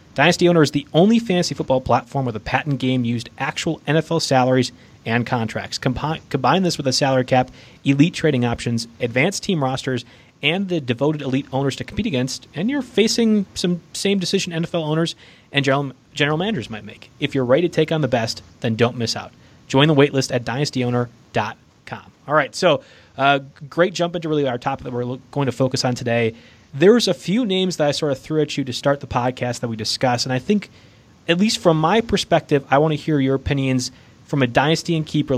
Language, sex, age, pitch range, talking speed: English, male, 30-49, 125-160 Hz, 210 wpm